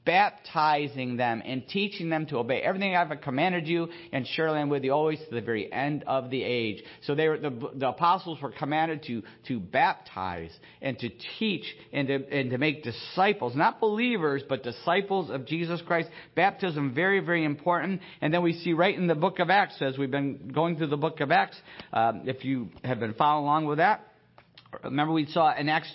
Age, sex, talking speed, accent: 50-69, male, 205 wpm, American